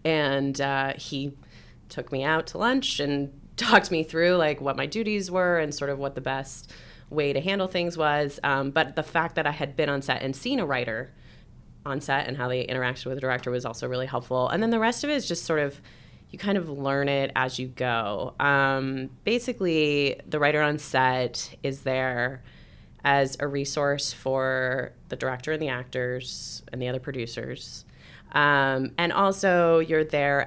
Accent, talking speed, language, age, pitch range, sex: American, 195 wpm, English, 30-49, 130-155 Hz, female